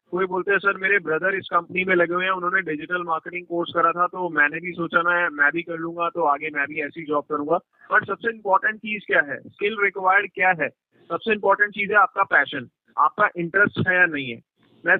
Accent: native